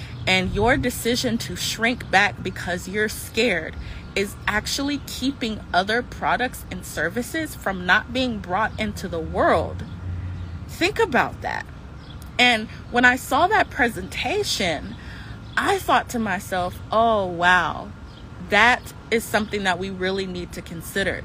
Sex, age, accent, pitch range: female, 20-39, American, 185-260 Hz